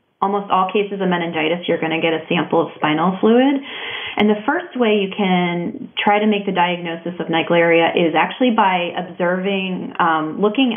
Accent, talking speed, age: American, 185 wpm, 30-49